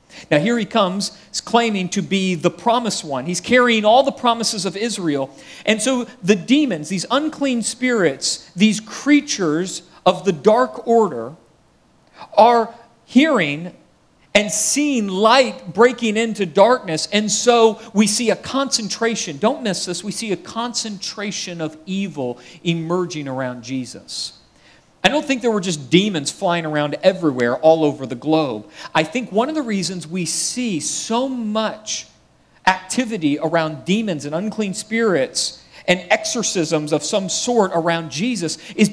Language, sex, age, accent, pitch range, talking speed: English, male, 40-59, American, 160-220 Hz, 145 wpm